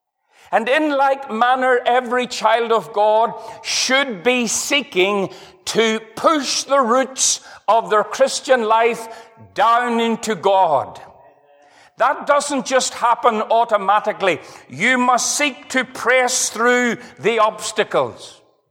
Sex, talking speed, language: male, 110 wpm, English